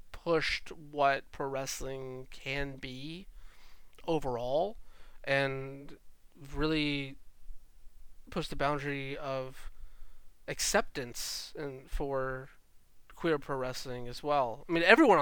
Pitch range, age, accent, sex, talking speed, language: 130-165 Hz, 20-39, American, male, 95 wpm, English